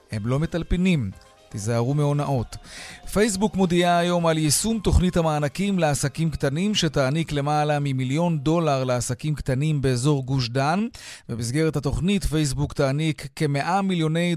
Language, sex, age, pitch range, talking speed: Hebrew, male, 30-49, 135-170 Hz, 120 wpm